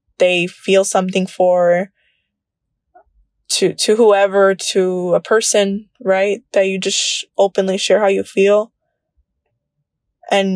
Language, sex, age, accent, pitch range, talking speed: English, female, 20-39, American, 190-260 Hz, 120 wpm